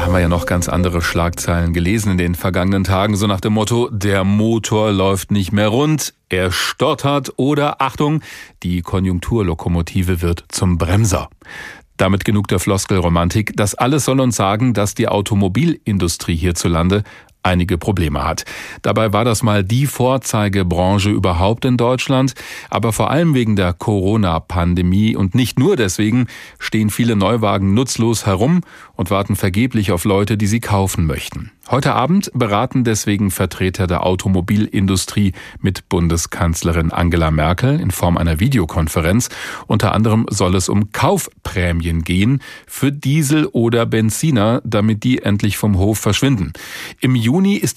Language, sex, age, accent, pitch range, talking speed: German, male, 40-59, German, 90-120 Hz, 145 wpm